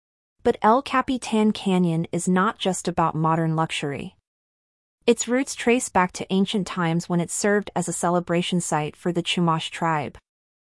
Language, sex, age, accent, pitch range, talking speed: English, female, 30-49, American, 170-205 Hz, 160 wpm